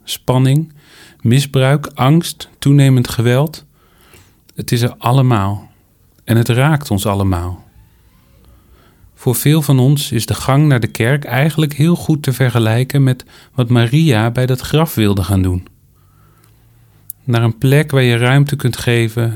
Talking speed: 145 wpm